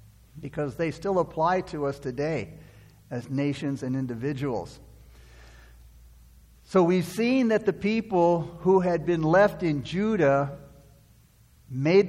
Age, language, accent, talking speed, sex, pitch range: 60-79, English, American, 120 wpm, male, 150-185 Hz